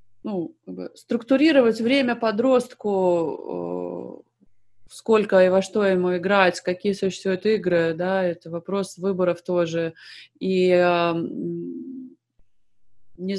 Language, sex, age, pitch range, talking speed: Russian, female, 30-49, 175-215 Hz, 90 wpm